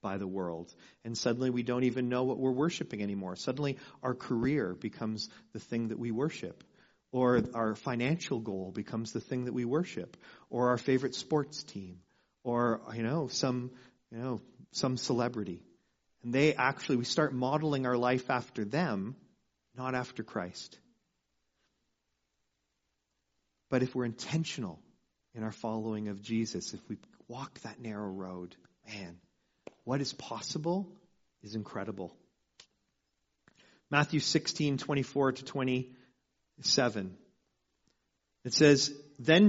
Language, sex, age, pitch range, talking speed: English, male, 40-59, 105-140 Hz, 130 wpm